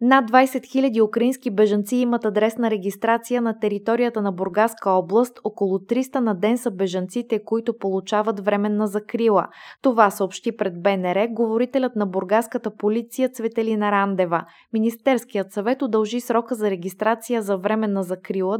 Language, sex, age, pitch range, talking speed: Bulgarian, female, 20-39, 195-235 Hz, 135 wpm